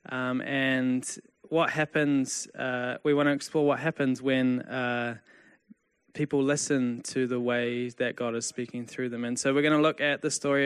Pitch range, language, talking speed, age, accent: 125-150 Hz, English, 185 wpm, 20-39, Australian